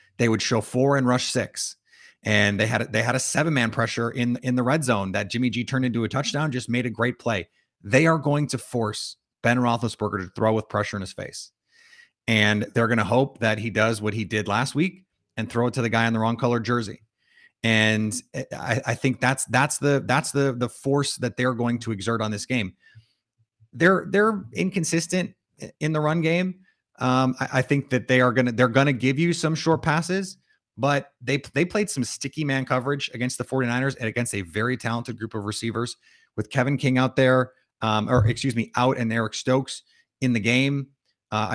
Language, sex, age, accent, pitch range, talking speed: English, male, 30-49, American, 115-135 Hz, 220 wpm